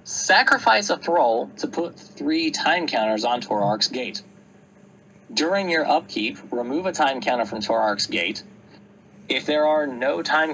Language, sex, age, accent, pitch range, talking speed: English, male, 30-49, American, 110-180 Hz, 150 wpm